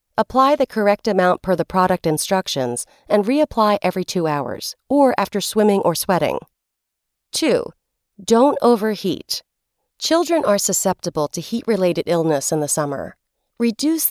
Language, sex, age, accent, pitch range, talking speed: English, female, 40-59, American, 170-230 Hz, 130 wpm